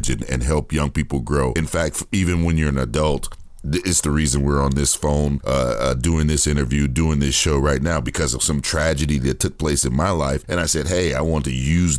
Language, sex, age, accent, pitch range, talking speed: English, male, 40-59, American, 70-85 Hz, 235 wpm